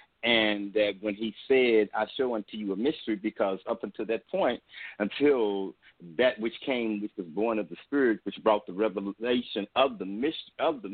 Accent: American